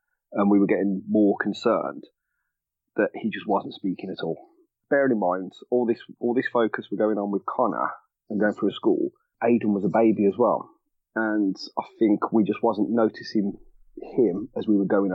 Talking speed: 190 wpm